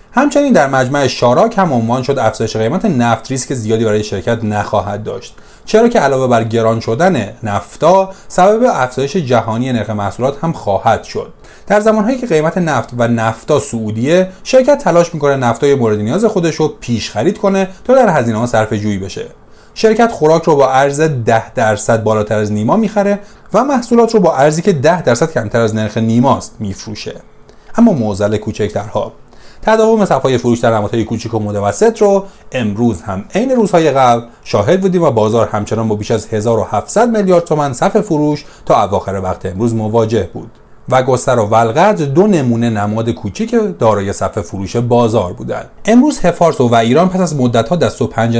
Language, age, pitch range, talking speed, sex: Persian, 30-49, 110-175 Hz, 175 wpm, male